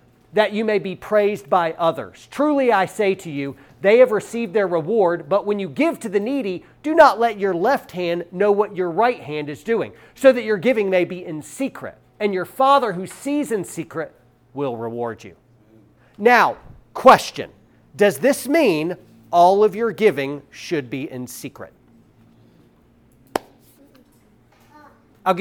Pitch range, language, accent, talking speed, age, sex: 170-235 Hz, English, American, 165 wpm, 40-59, male